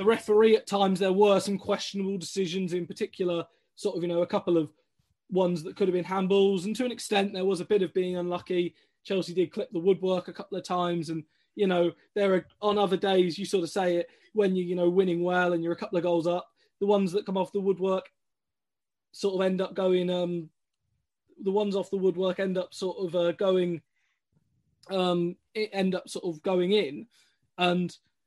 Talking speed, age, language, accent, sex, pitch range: 215 wpm, 20-39, English, British, male, 175-200 Hz